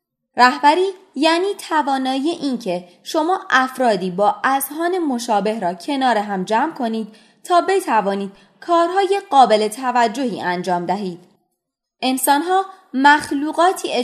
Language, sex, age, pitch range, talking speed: Persian, female, 20-39, 190-315 Hz, 105 wpm